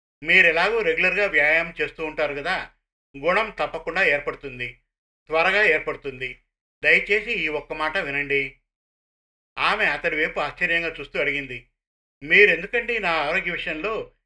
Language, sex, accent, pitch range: Telugu, male, native, 145-195 Hz